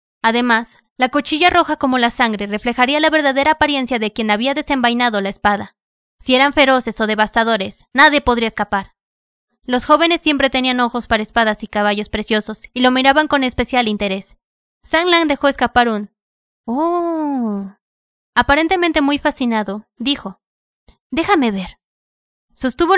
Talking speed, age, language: 140 wpm, 20-39, Spanish